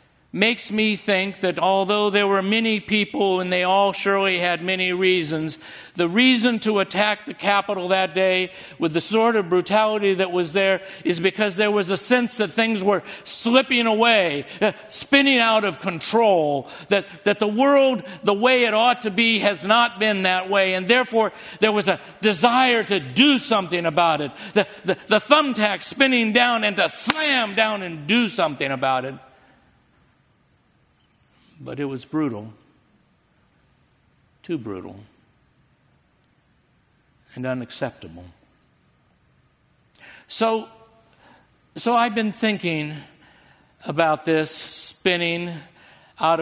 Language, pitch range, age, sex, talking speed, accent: English, 155-215 Hz, 50-69, male, 135 wpm, American